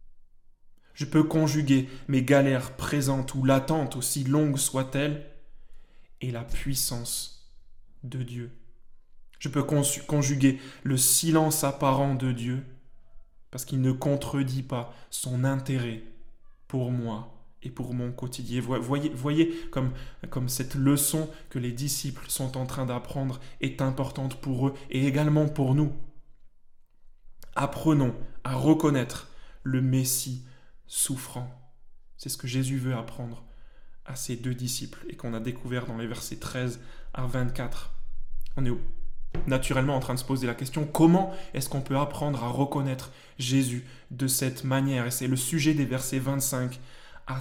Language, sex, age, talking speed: French, male, 20-39, 145 wpm